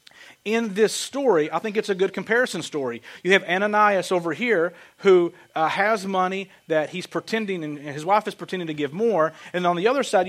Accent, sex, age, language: American, male, 40-59, English